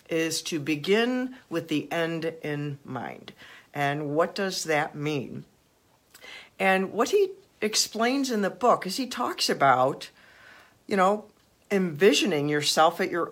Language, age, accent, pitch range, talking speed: English, 50-69, American, 150-215 Hz, 135 wpm